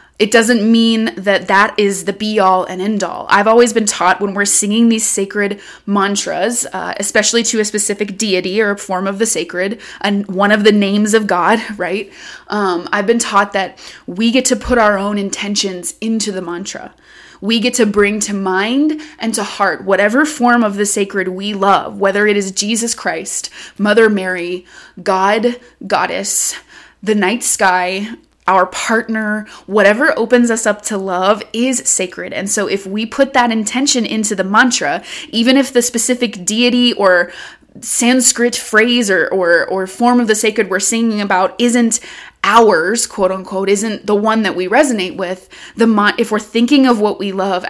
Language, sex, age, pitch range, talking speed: English, female, 20-39, 195-230 Hz, 175 wpm